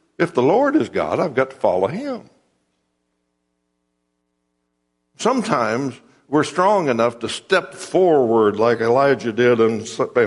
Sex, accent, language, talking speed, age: male, American, English, 125 wpm, 60-79